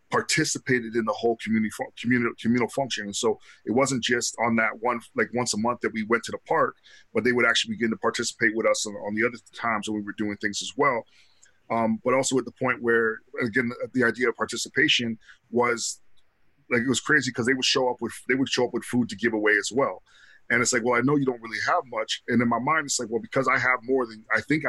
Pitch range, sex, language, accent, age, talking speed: 110-125 Hz, male, English, American, 20-39, 260 wpm